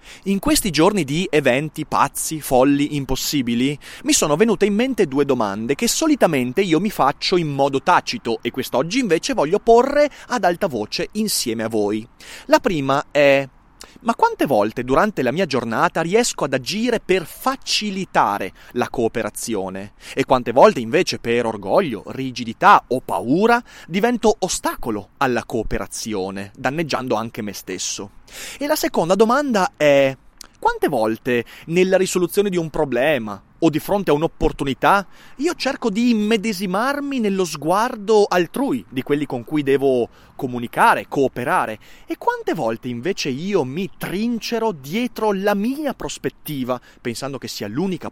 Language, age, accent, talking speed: Italian, 30-49, native, 140 wpm